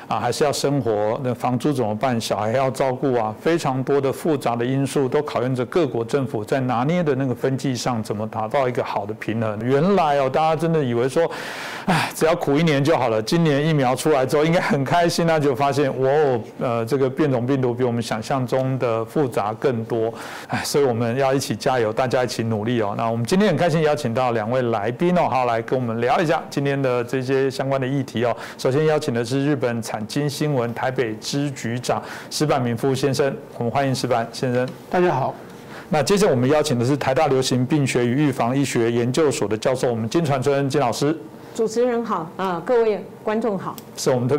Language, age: Chinese, 60-79